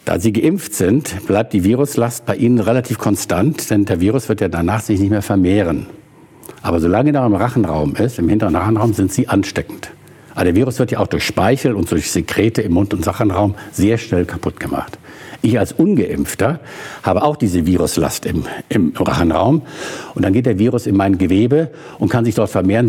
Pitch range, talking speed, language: 100-125 Hz, 195 wpm, German